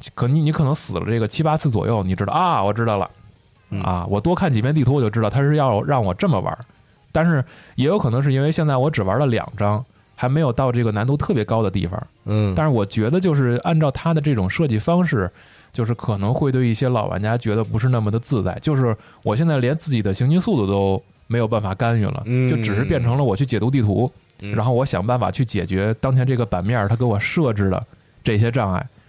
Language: Chinese